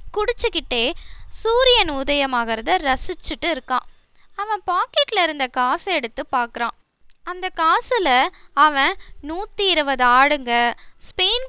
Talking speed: 95 wpm